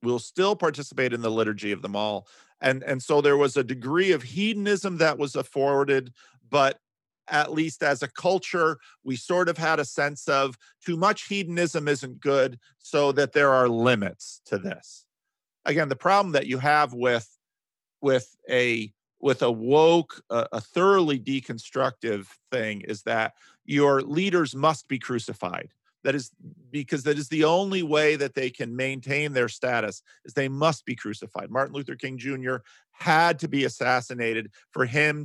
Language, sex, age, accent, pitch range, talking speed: English, male, 50-69, American, 125-150 Hz, 165 wpm